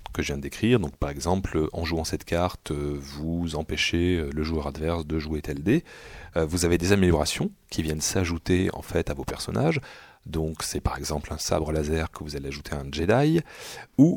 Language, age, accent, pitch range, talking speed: French, 40-59, French, 75-100 Hz, 205 wpm